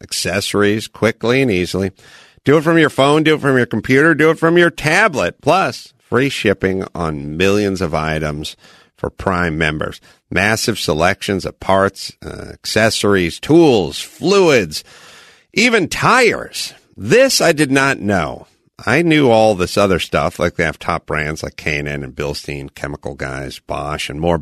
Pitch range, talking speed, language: 85-130 Hz, 160 wpm, English